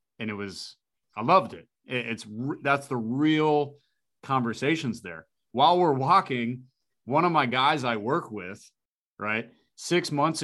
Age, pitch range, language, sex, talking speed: 30-49, 110-135 Hz, English, male, 145 wpm